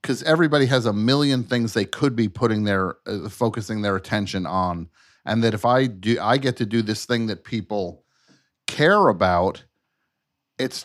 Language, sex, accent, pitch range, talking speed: English, male, American, 100-130 Hz, 175 wpm